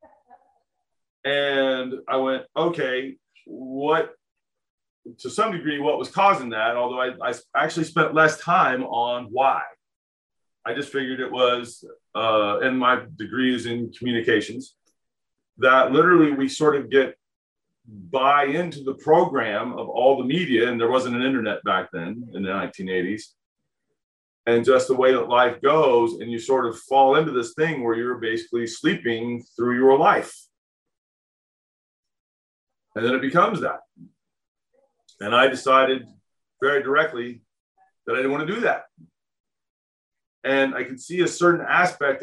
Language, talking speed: English, 145 wpm